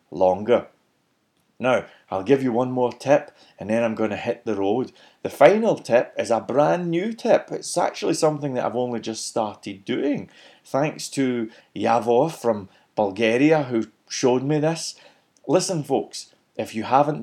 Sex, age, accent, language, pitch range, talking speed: male, 30-49, British, English, 115-150 Hz, 165 wpm